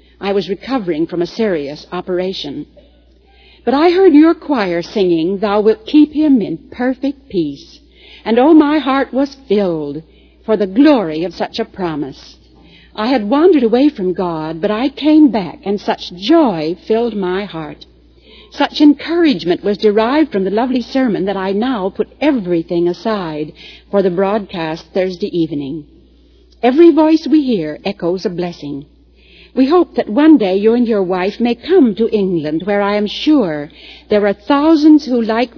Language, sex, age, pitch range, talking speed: English, female, 60-79, 180-265 Hz, 165 wpm